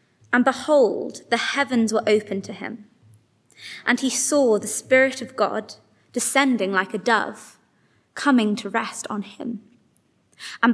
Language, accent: English, British